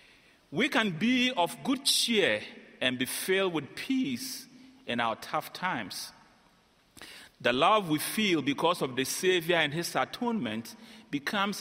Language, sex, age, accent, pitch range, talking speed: English, male, 40-59, Nigerian, 150-235 Hz, 140 wpm